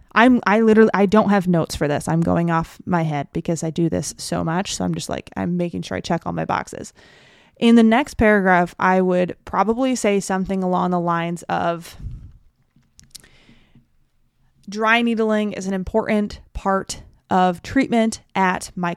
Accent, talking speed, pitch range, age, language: American, 175 wpm, 180-220 Hz, 20-39, English